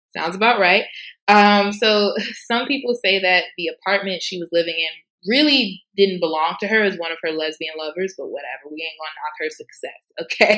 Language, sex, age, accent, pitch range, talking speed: English, female, 20-39, American, 165-230 Hz, 200 wpm